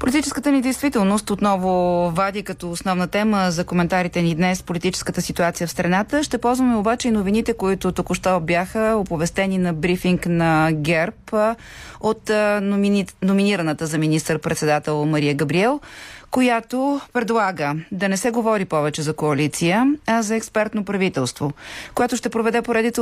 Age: 30-49